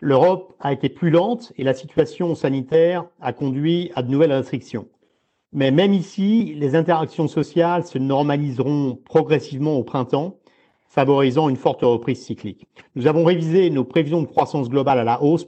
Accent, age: French, 50-69